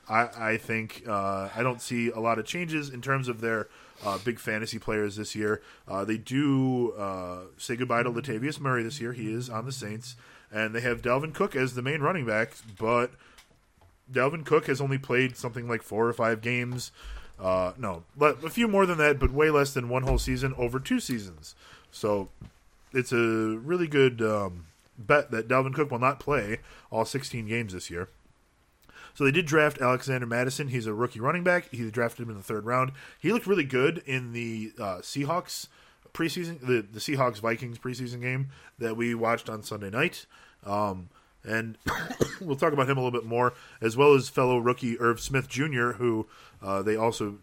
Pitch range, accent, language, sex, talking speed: 110-135 Hz, American, English, male, 195 wpm